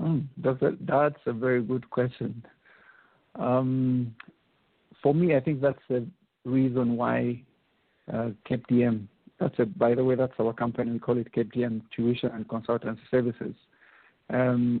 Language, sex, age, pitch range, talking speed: English, male, 50-69, 115-130 Hz, 135 wpm